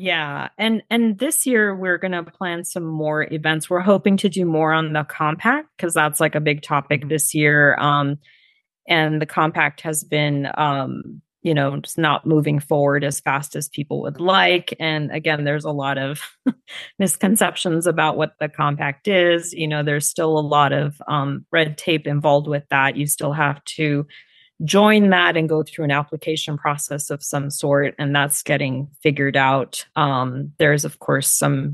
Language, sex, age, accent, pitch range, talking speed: English, female, 30-49, American, 145-165 Hz, 185 wpm